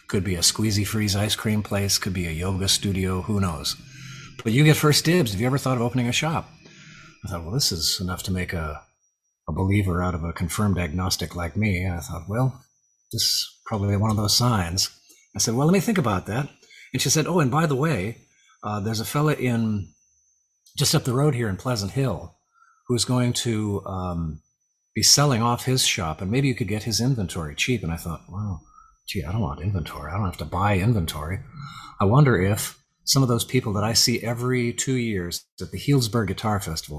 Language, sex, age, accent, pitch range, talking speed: English, male, 40-59, American, 90-125 Hz, 220 wpm